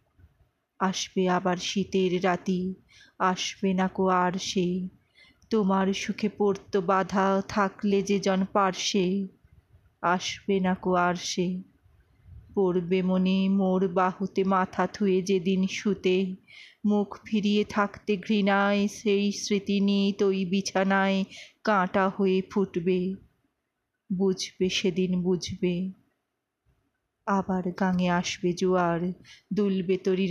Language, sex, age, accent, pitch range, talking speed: Bengali, female, 30-49, native, 185-200 Hz, 85 wpm